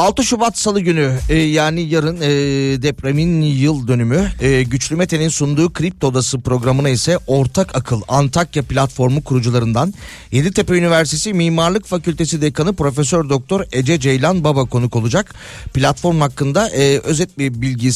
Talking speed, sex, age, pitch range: 125 wpm, male, 40-59, 135-170 Hz